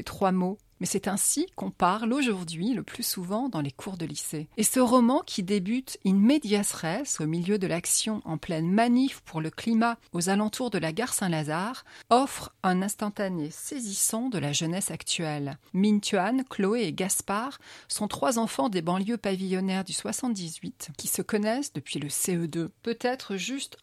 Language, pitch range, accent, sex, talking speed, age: French, 185-230 Hz, French, female, 175 wpm, 40-59